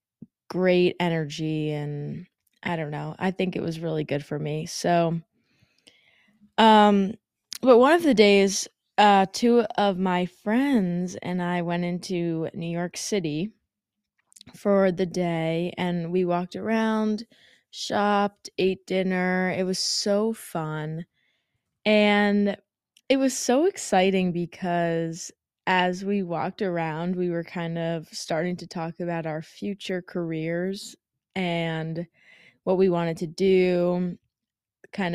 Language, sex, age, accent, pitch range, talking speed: English, female, 20-39, American, 165-205 Hz, 130 wpm